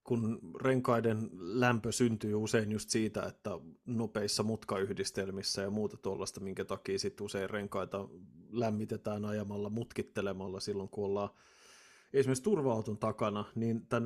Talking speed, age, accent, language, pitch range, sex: 125 wpm, 30-49, native, Finnish, 105-125 Hz, male